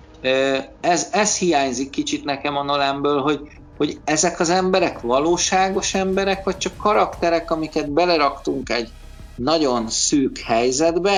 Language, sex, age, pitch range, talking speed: Hungarian, male, 50-69, 125-160 Hz, 120 wpm